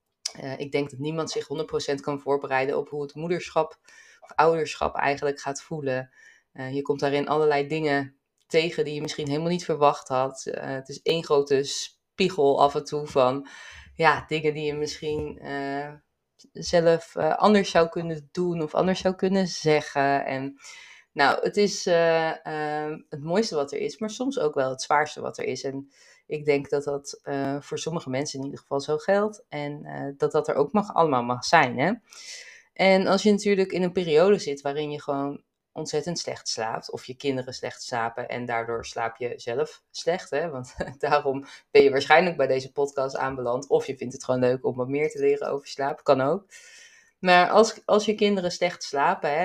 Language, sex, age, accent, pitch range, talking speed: Dutch, female, 20-39, Dutch, 140-180 Hz, 195 wpm